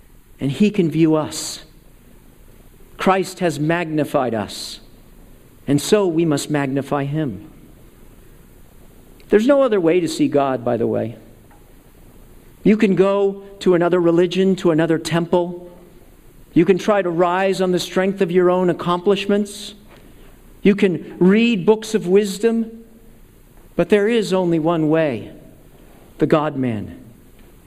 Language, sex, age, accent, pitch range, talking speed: English, male, 50-69, American, 155-205 Hz, 130 wpm